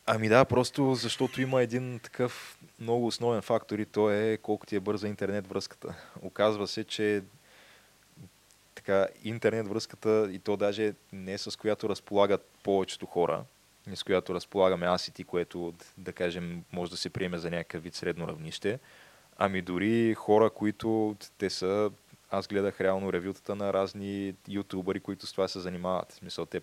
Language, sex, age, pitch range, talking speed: Bulgarian, male, 20-39, 90-105 Hz, 170 wpm